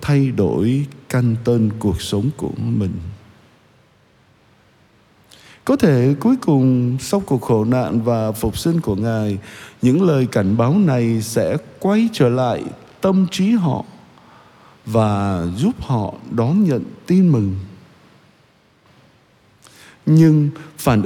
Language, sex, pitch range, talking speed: Vietnamese, male, 110-150 Hz, 120 wpm